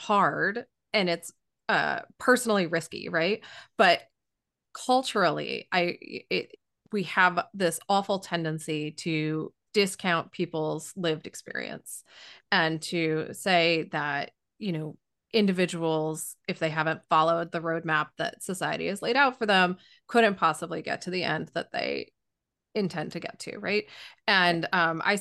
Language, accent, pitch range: English, American, 165-210 Hz